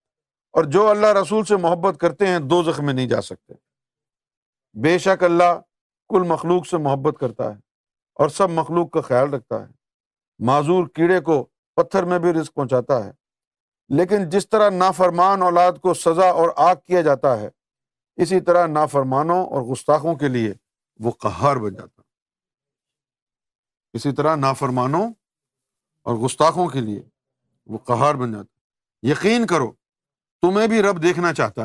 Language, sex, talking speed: Urdu, male, 155 wpm